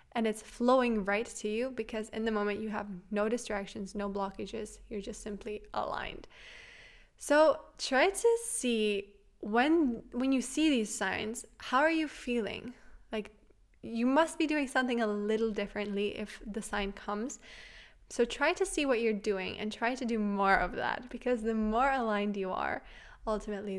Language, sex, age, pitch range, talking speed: English, female, 20-39, 205-240 Hz, 170 wpm